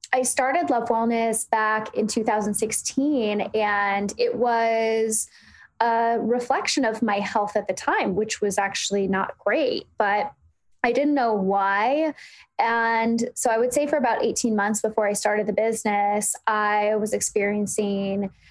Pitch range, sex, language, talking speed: 200-245 Hz, female, English, 145 wpm